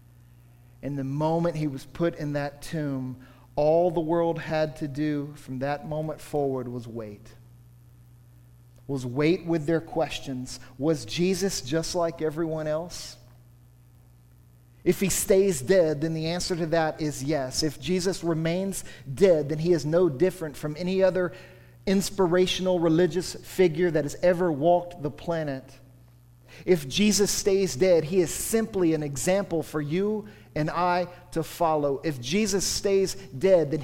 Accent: American